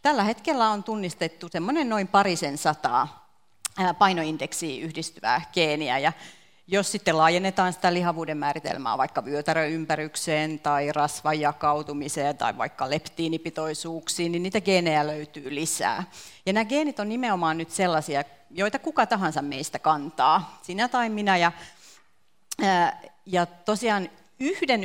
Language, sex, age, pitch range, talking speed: Finnish, female, 40-59, 160-210 Hz, 115 wpm